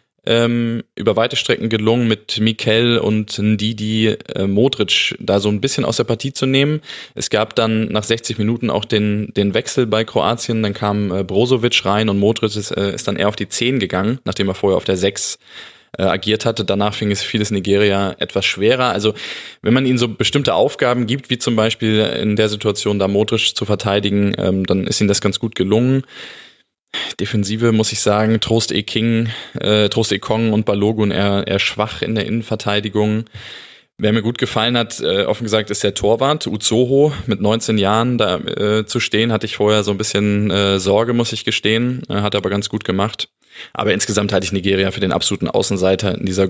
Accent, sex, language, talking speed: German, male, German, 190 wpm